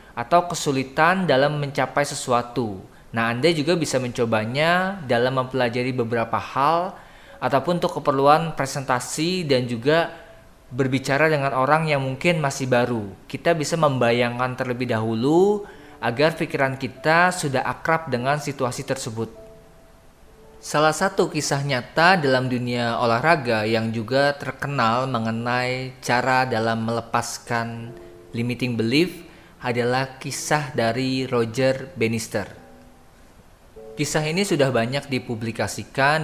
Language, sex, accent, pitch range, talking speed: Indonesian, male, native, 115-145 Hz, 110 wpm